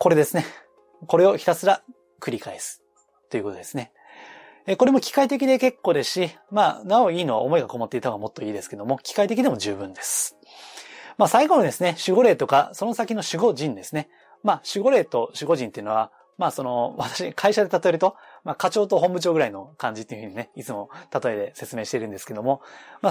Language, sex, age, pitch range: Japanese, male, 20-39, 140-220 Hz